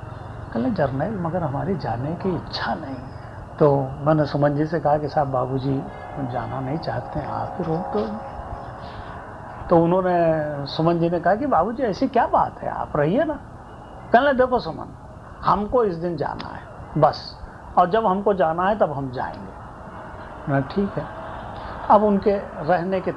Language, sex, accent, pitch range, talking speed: Hindi, male, native, 140-205 Hz, 165 wpm